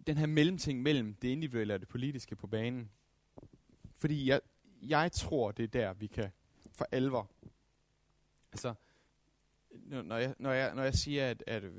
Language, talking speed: Danish, 150 wpm